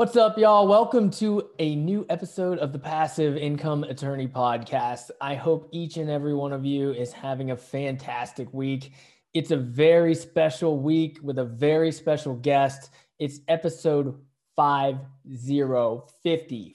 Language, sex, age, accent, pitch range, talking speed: English, male, 20-39, American, 140-165 Hz, 145 wpm